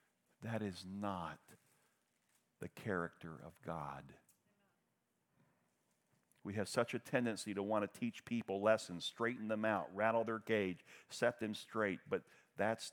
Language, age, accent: English, 50-69, American